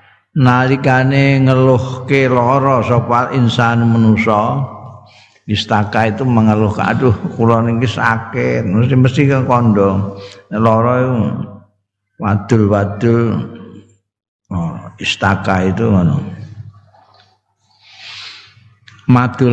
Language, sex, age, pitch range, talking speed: Indonesian, male, 60-79, 105-135 Hz, 75 wpm